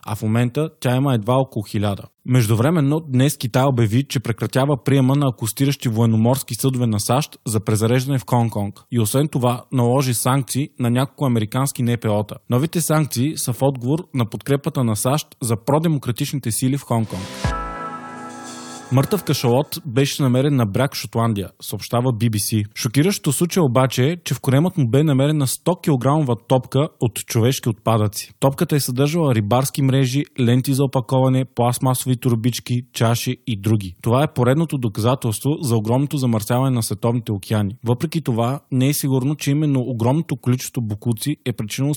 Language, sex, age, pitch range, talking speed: Bulgarian, male, 20-39, 115-140 Hz, 155 wpm